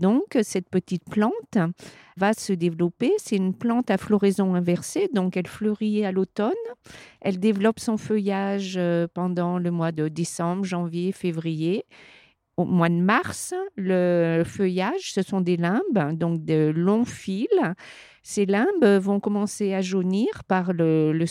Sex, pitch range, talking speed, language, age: female, 175-225 Hz, 145 wpm, French, 50-69